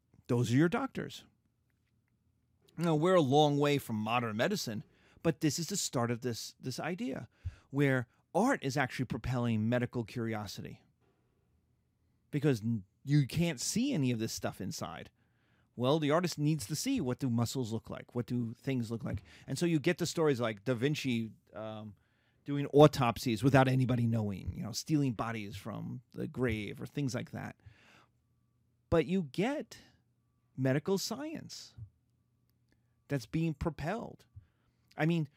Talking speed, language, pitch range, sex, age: 150 wpm, English, 115-155 Hz, male, 30-49